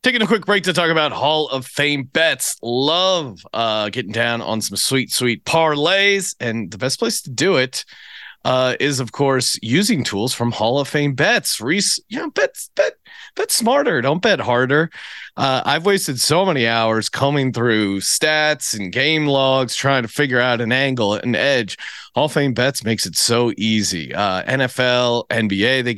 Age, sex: 30-49, male